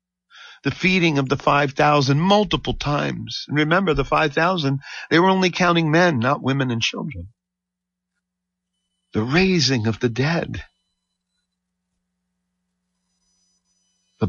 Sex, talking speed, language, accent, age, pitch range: male, 110 wpm, English, American, 50-69, 115-180 Hz